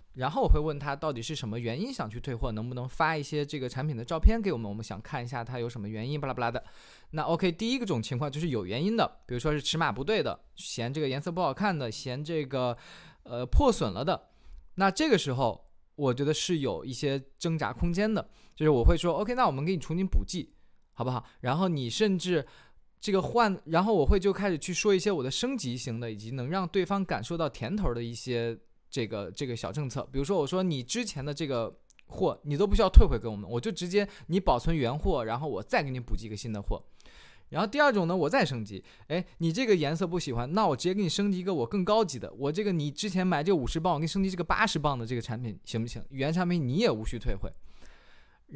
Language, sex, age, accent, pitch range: Chinese, male, 20-39, native, 125-190 Hz